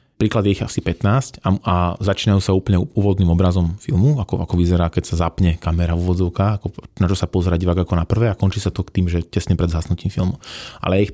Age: 20-39